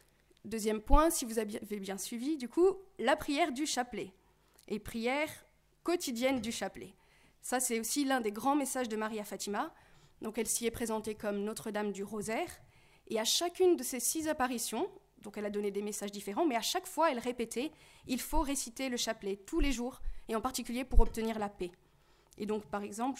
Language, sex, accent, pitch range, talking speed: French, female, French, 220-270 Hz, 195 wpm